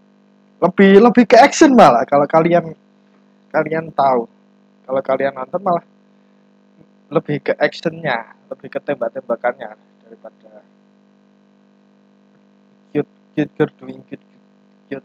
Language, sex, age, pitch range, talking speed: Indonesian, male, 20-39, 160-215 Hz, 100 wpm